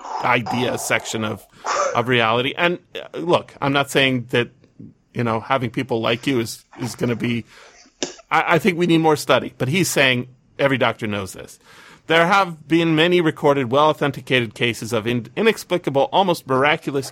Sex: male